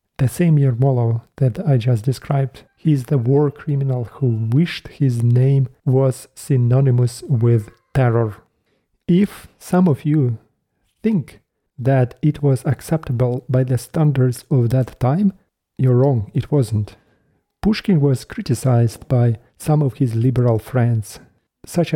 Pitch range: 120-145 Hz